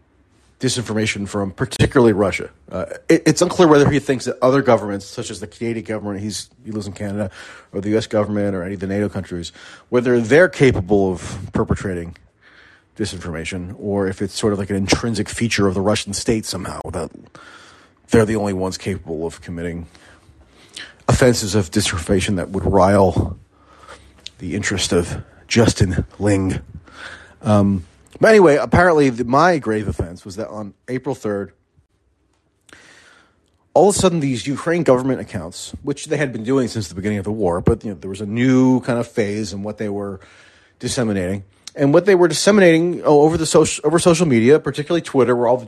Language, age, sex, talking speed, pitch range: English, 30-49, male, 180 wpm, 100-130 Hz